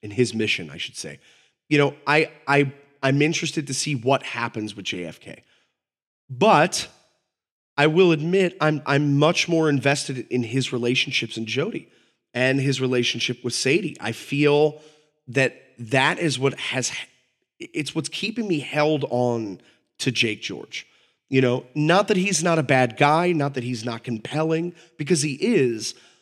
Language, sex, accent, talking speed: English, male, American, 160 wpm